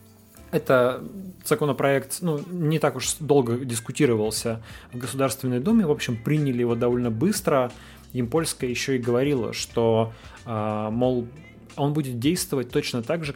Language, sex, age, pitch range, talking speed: Russian, male, 20-39, 115-140 Hz, 130 wpm